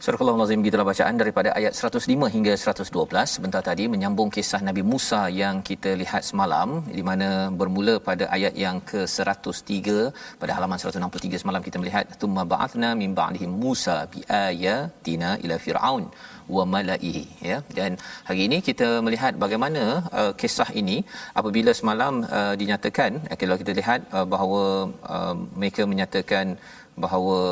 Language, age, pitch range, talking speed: Malayalam, 40-59, 95-115 Hz, 145 wpm